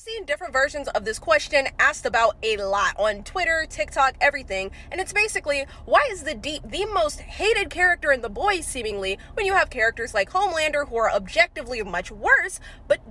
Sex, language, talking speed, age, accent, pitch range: female, English, 190 wpm, 20-39, American, 225-325 Hz